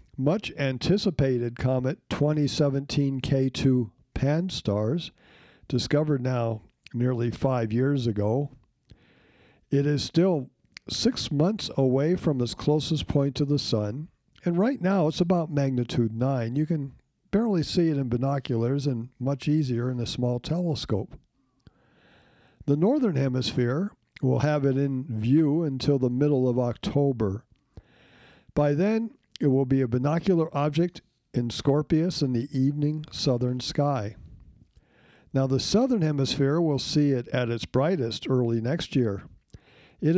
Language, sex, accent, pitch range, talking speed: English, male, American, 125-150 Hz, 135 wpm